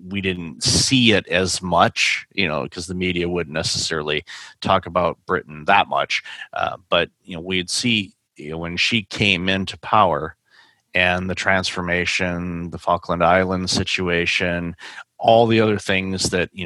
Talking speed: 160 wpm